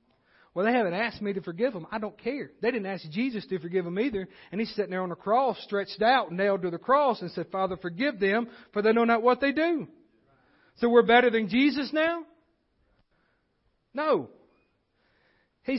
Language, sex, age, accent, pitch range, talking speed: English, male, 40-59, American, 215-270 Hz, 200 wpm